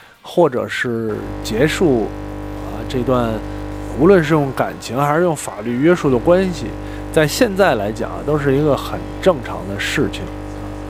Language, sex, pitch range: Chinese, male, 105-155 Hz